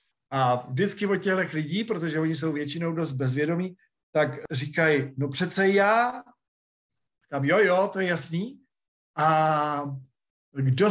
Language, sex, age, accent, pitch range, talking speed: Czech, male, 50-69, native, 130-175 Hz, 125 wpm